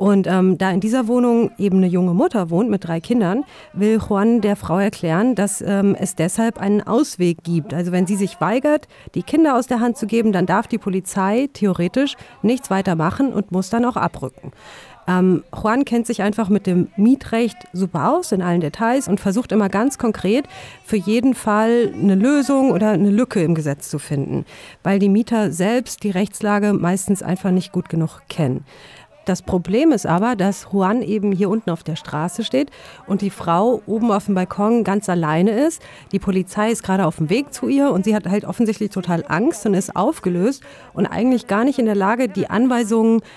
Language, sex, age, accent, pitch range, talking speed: German, female, 40-59, German, 185-235 Hz, 200 wpm